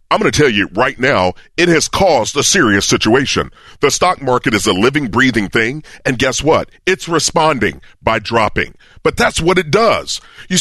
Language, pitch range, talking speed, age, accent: English, 125-165 Hz, 190 wpm, 40-59, American